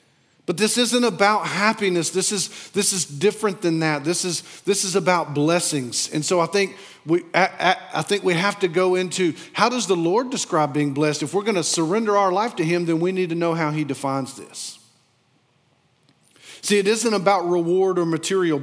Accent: American